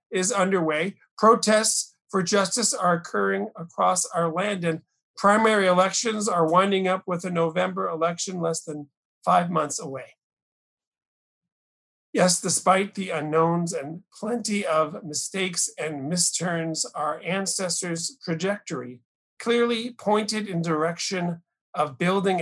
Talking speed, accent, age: 120 wpm, American, 50-69